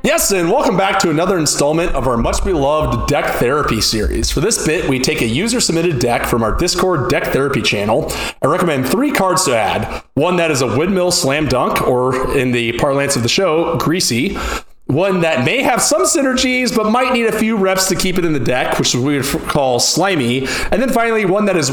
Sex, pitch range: male, 135-190 Hz